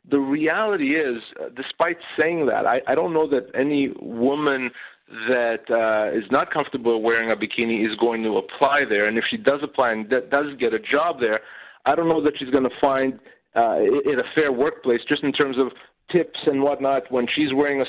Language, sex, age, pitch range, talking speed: English, male, 40-59, 125-155 Hz, 200 wpm